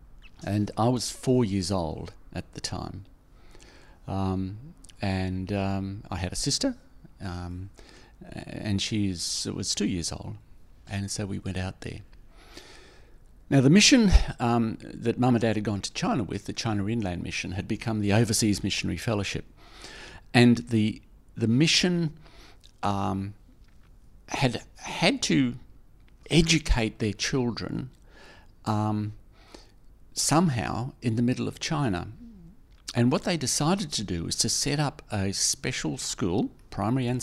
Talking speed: 135 wpm